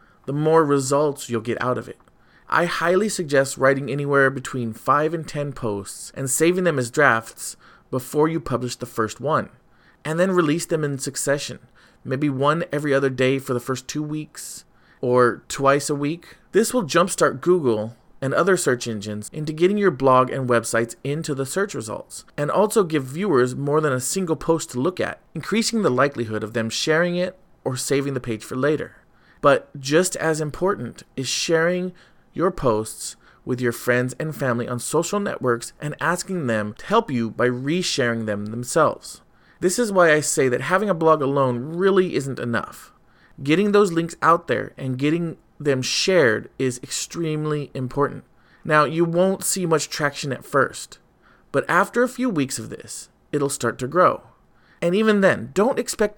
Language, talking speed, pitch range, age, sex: English, 180 wpm, 125-170 Hz, 30-49, male